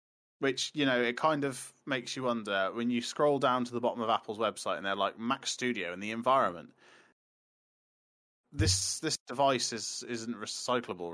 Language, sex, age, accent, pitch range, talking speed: English, male, 20-39, British, 100-130 Hz, 180 wpm